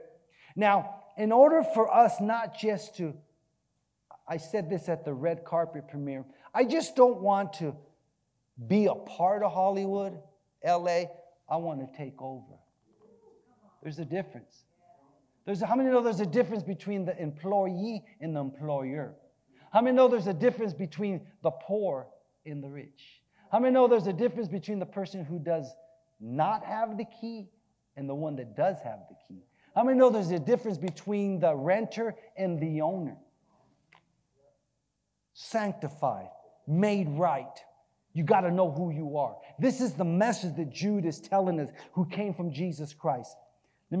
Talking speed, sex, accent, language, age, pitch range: 160 wpm, male, American, English, 40-59, 145-205 Hz